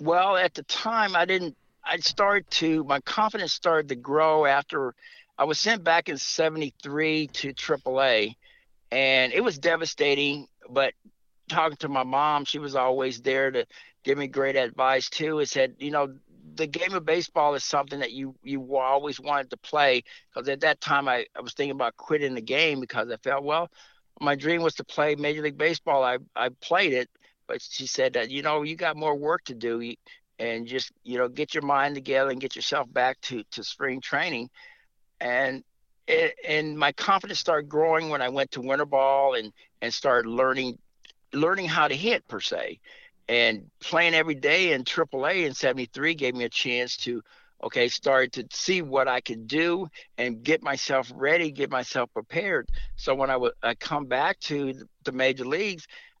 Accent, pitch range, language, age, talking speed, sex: American, 130-160 Hz, English, 60-79, 190 wpm, male